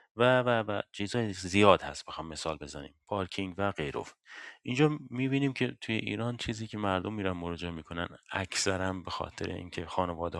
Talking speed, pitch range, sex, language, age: 155 wpm, 80-95 Hz, male, Persian, 30-49